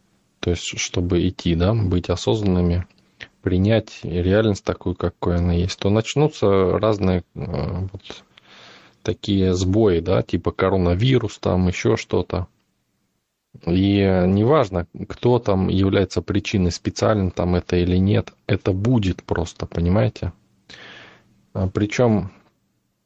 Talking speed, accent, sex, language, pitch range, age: 105 wpm, native, male, Russian, 90-105 Hz, 20-39